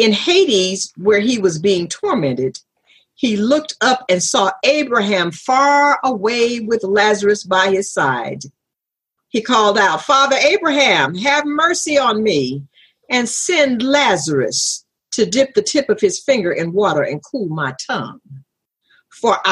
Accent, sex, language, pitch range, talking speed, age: American, female, English, 180-270 Hz, 140 wpm, 50-69